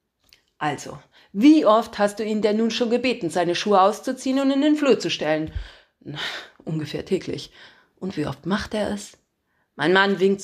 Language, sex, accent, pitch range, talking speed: German, female, German, 180-275 Hz, 180 wpm